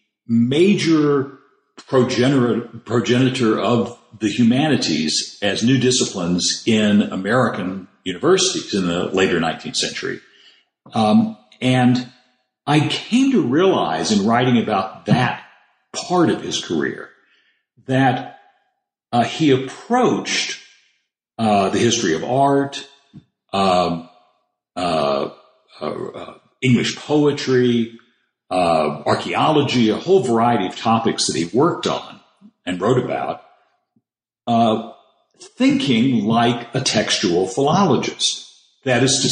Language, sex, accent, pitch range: English, male, American, 115-160 Hz